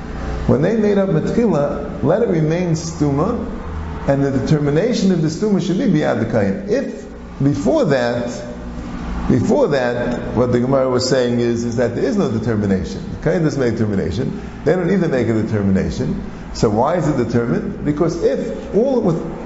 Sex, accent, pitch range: male, American, 115-175 Hz